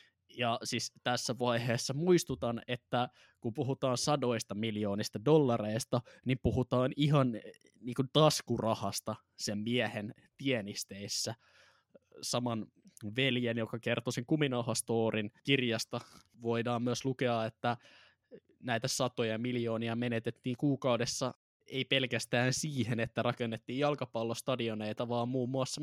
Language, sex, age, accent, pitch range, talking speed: Finnish, male, 10-29, native, 115-140 Hz, 100 wpm